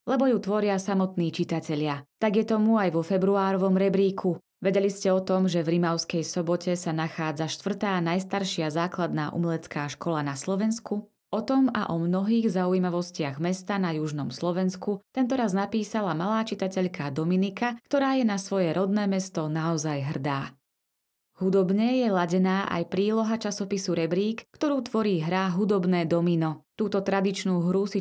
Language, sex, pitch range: Slovak, female, 165-210 Hz